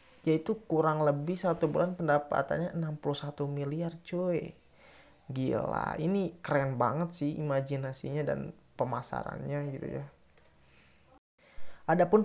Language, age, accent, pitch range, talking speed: Indonesian, 20-39, native, 140-165 Hz, 100 wpm